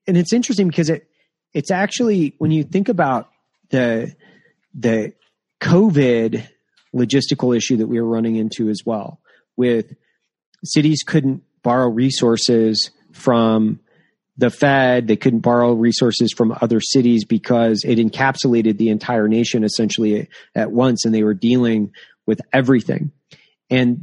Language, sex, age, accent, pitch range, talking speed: English, male, 30-49, American, 115-140 Hz, 135 wpm